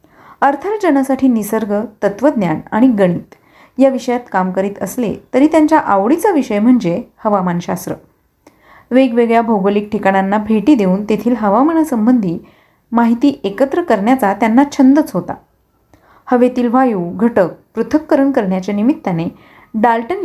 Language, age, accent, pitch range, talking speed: Marathi, 30-49, native, 200-275 Hz, 105 wpm